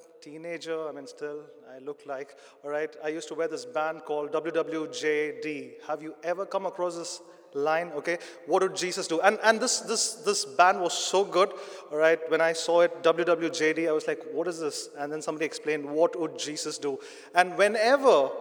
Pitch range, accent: 160-220 Hz, Indian